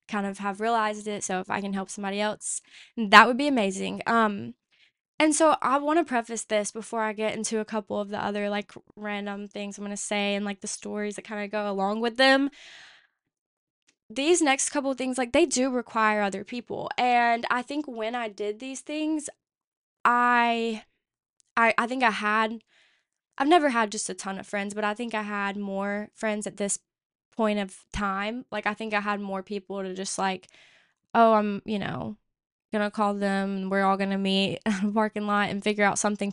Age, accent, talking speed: 10-29, American, 210 wpm